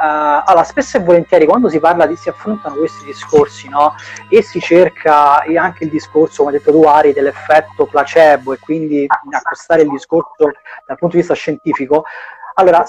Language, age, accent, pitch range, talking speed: Italian, 30-49, native, 150-230 Hz, 175 wpm